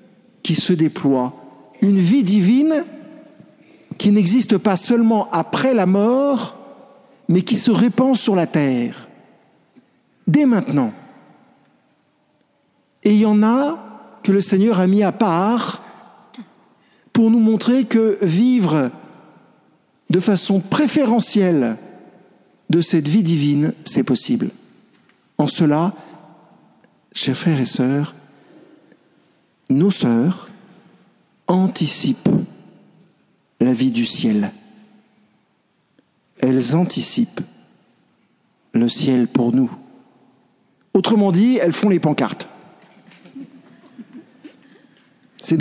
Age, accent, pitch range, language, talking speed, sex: 50-69, French, 170-235 Hz, French, 95 wpm, male